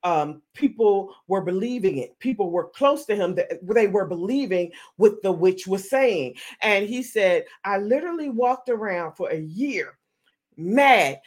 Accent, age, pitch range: American, 40-59, 215-285 Hz